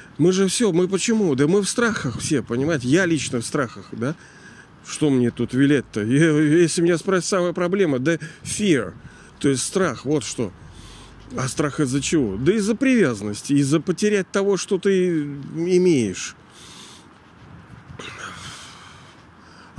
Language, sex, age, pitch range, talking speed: Russian, male, 40-59, 120-170 Hz, 140 wpm